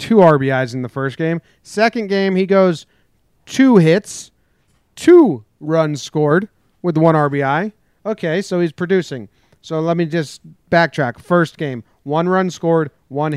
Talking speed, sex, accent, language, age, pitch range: 150 wpm, male, American, English, 30-49, 140-185 Hz